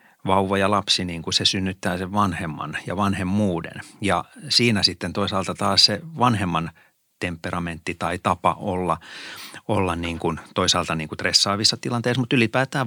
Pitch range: 95-110 Hz